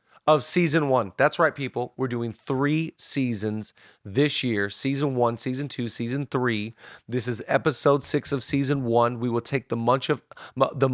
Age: 30-49